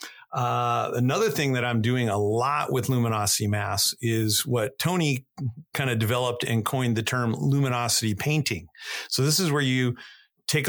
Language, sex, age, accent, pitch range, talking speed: English, male, 50-69, American, 110-135 Hz, 165 wpm